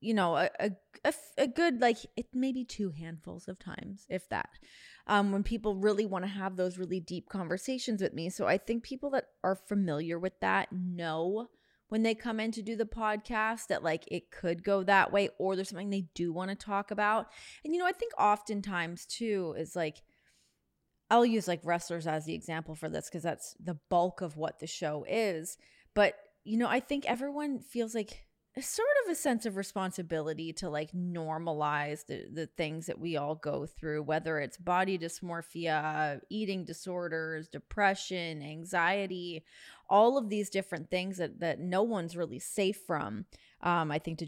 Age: 20-39